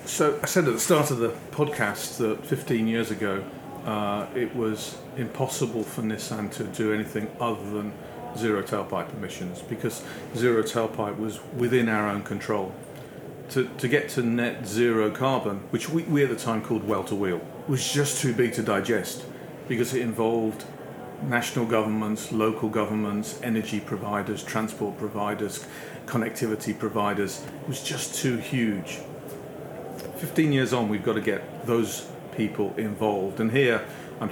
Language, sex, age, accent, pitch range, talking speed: English, male, 40-59, British, 105-120 Hz, 150 wpm